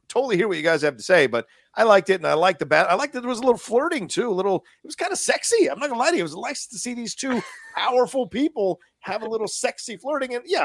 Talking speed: 310 wpm